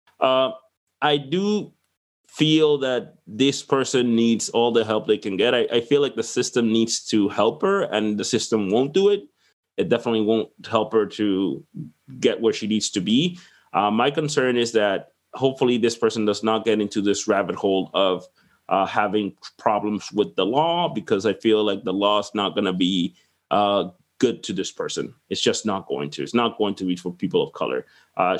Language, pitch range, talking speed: English, 100-135 Hz, 200 wpm